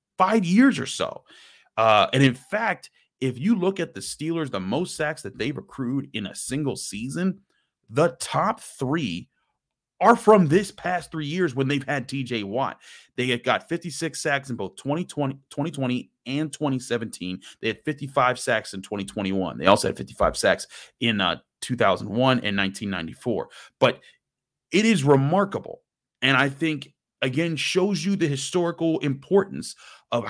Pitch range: 120-165 Hz